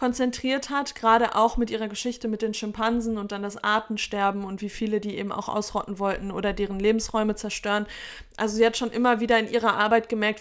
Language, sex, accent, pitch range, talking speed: German, female, German, 215-240 Hz, 210 wpm